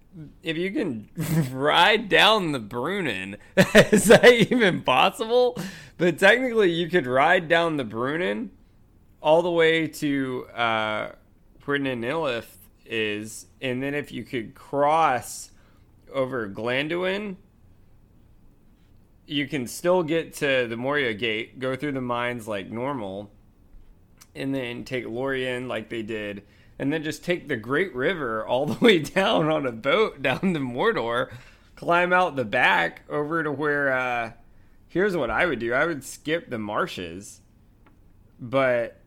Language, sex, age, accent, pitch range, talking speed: English, male, 20-39, American, 105-150 Hz, 140 wpm